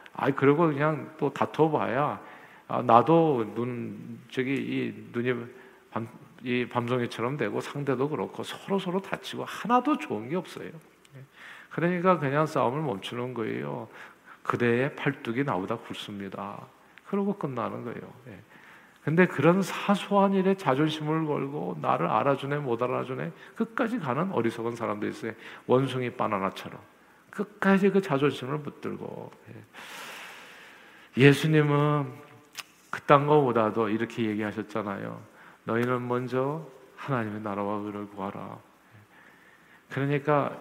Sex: male